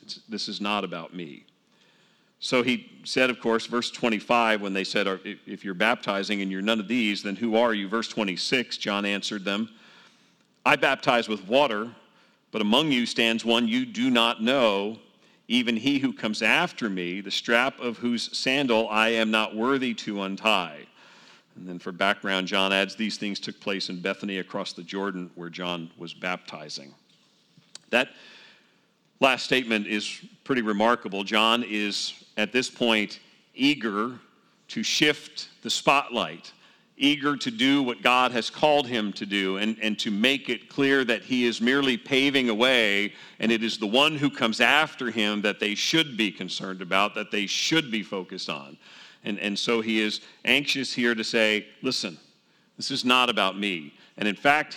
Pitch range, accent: 100-130 Hz, American